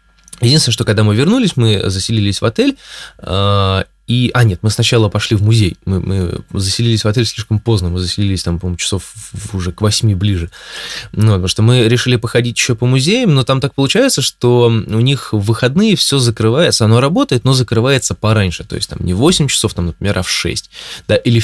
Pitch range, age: 95-120 Hz, 20-39